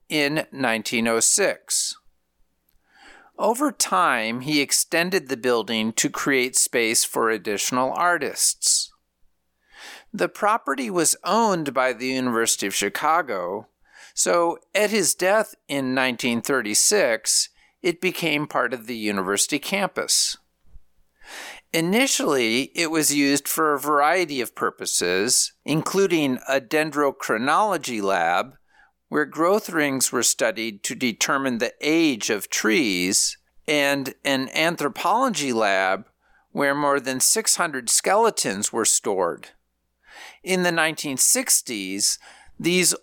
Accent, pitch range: American, 125-170 Hz